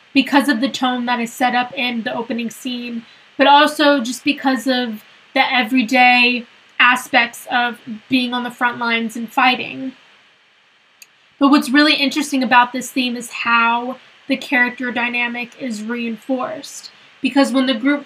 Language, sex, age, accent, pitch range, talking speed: English, female, 10-29, American, 240-270 Hz, 155 wpm